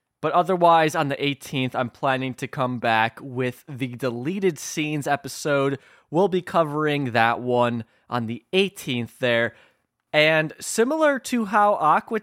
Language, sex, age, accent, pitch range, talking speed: English, male, 20-39, American, 130-180 Hz, 140 wpm